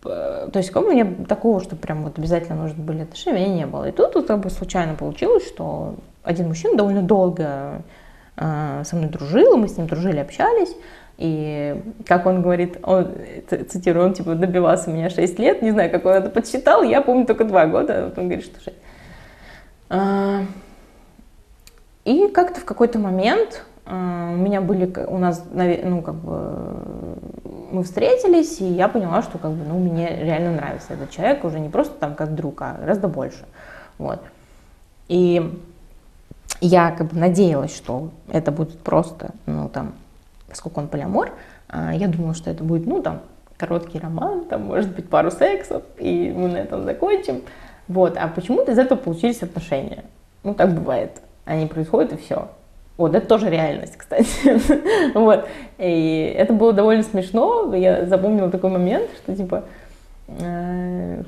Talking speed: 165 wpm